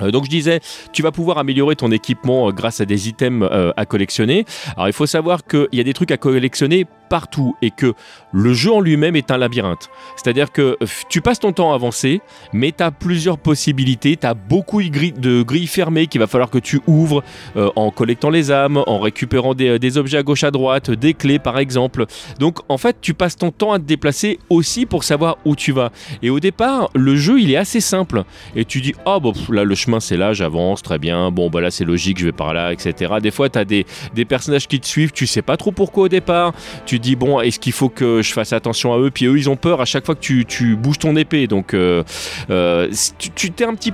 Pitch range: 115-165 Hz